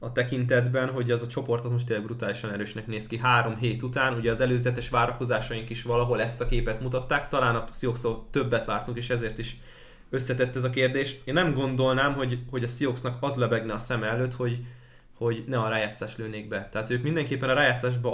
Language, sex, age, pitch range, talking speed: Hungarian, male, 20-39, 115-130 Hz, 205 wpm